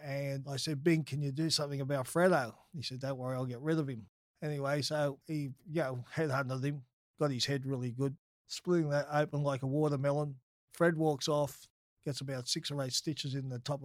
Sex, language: male, English